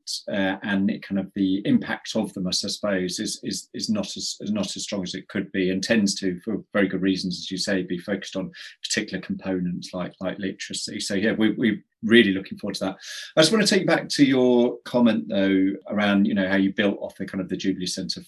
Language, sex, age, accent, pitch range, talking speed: English, male, 30-49, British, 95-115 Hz, 245 wpm